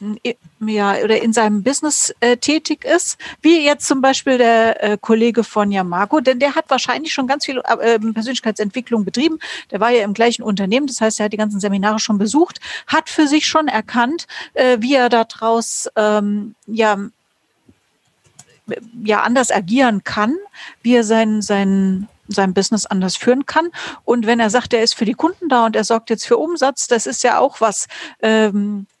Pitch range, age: 210-260 Hz, 50-69